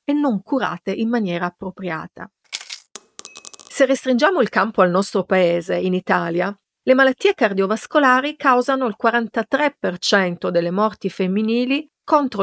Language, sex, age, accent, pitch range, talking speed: Italian, female, 50-69, native, 185-255 Hz, 115 wpm